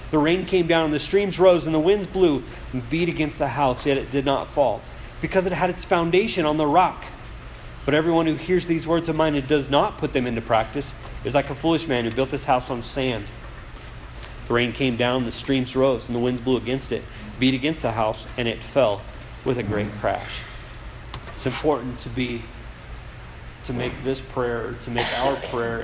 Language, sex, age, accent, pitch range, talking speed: English, male, 30-49, American, 125-155 Hz, 210 wpm